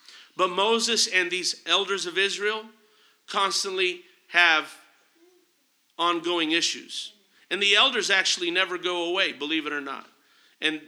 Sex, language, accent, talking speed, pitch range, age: male, English, American, 125 wpm, 170-215 Hz, 50-69